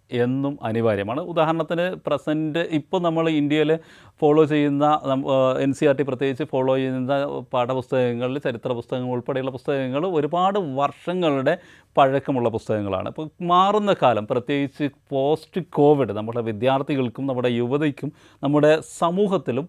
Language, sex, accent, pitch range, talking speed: Malayalam, male, native, 130-170 Hz, 115 wpm